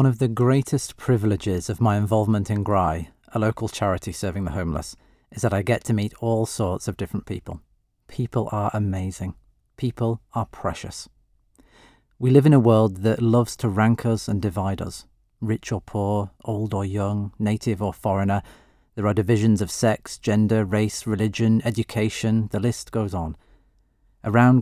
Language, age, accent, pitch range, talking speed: English, 40-59, British, 100-115 Hz, 170 wpm